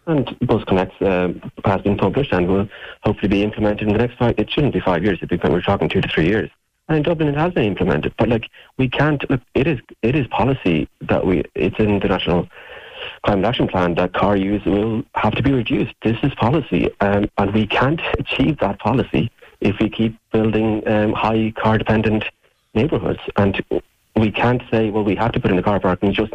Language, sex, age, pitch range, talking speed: English, male, 30-49, 95-115 Hz, 215 wpm